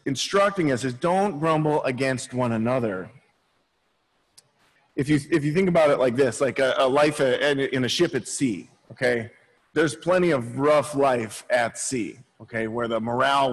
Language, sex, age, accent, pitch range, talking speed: English, male, 30-49, American, 130-165 Hz, 170 wpm